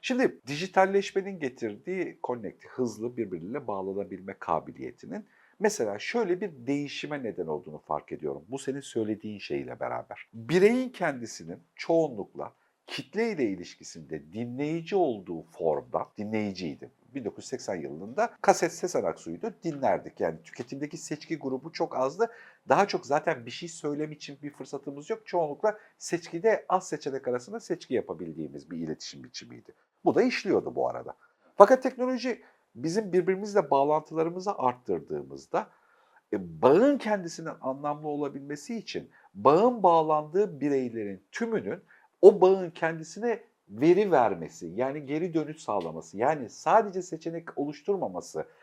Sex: male